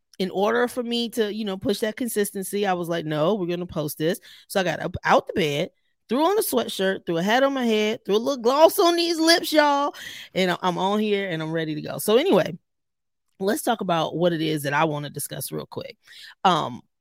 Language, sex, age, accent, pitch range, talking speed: English, female, 20-39, American, 155-220 Hz, 245 wpm